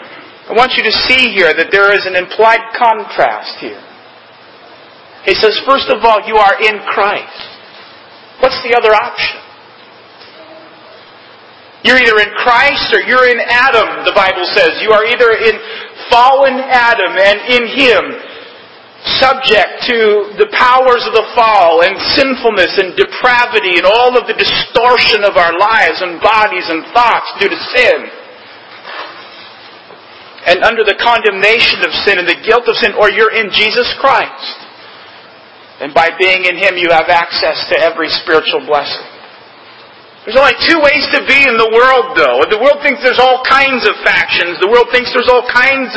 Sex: male